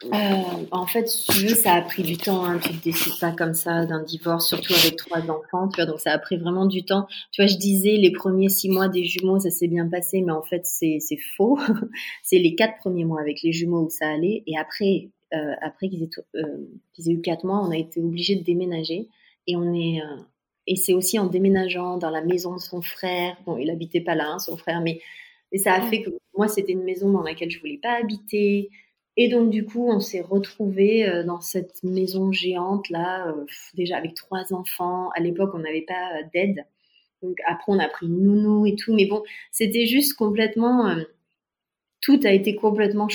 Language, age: English, 30-49